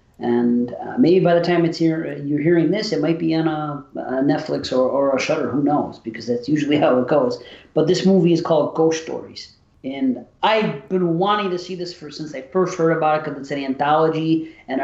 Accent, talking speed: American, 225 wpm